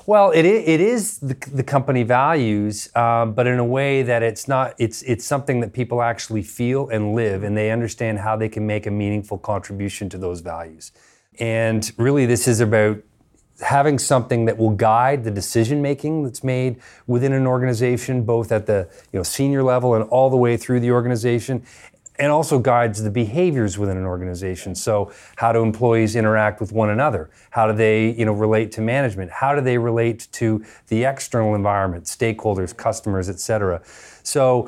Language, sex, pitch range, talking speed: English, male, 105-125 Hz, 180 wpm